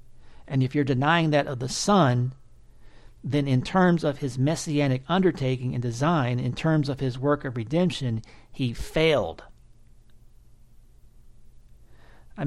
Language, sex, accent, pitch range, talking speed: English, male, American, 125-170 Hz, 130 wpm